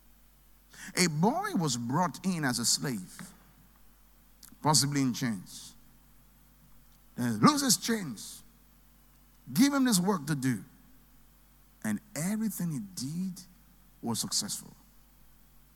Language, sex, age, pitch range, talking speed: English, male, 50-69, 145-220 Hz, 100 wpm